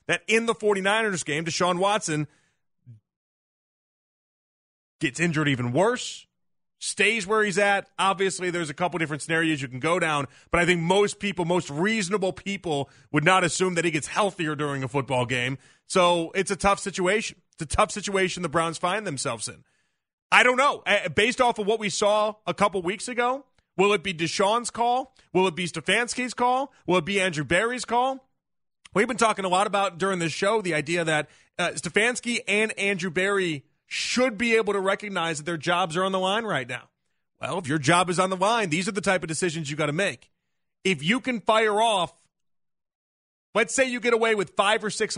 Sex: male